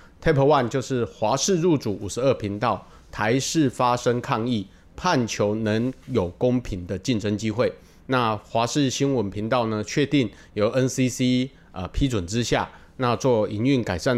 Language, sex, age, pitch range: Chinese, male, 30-49, 100-130 Hz